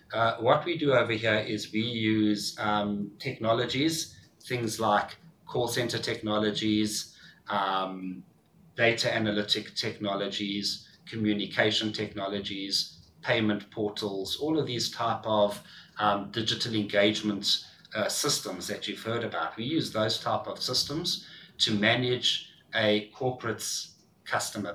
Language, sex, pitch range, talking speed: English, male, 105-125 Hz, 120 wpm